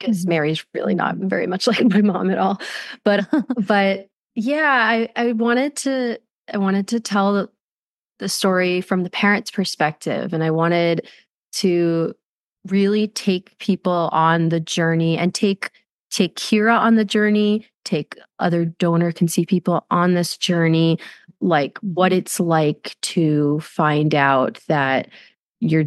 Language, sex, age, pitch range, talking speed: English, female, 30-49, 170-210 Hz, 140 wpm